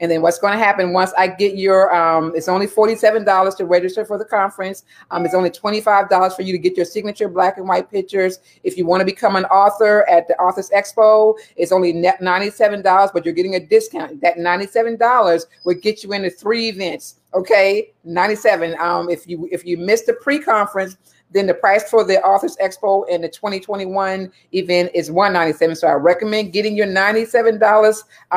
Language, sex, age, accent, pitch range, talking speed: English, female, 40-59, American, 185-225 Hz, 190 wpm